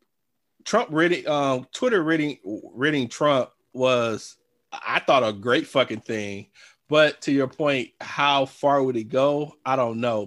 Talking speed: 150 wpm